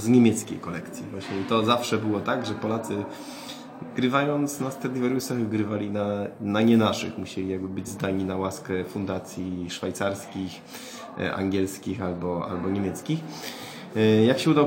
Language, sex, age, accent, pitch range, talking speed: Polish, male, 20-39, native, 95-115 Hz, 140 wpm